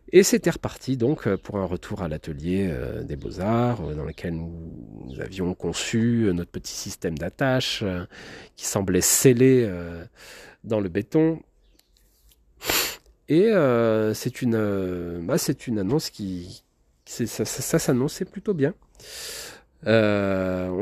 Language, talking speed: French, 140 wpm